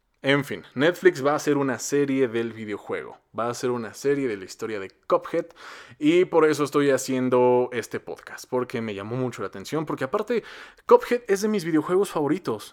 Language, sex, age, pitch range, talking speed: Spanish, male, 20-39, 125-205 Hz, 195 wpm